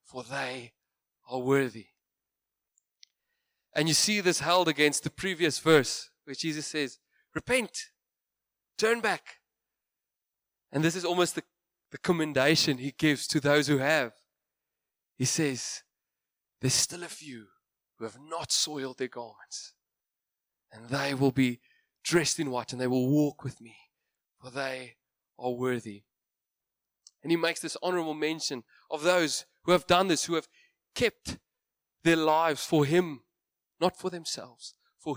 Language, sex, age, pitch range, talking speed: English, male, 20-39, 125-165 Hz, 145 wpm